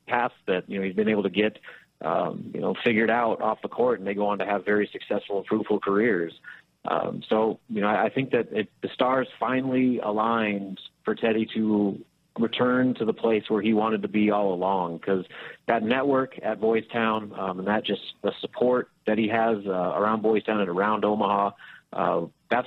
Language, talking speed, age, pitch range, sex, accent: English, 205 wpm, 30-49, 100-115 Hz, male, American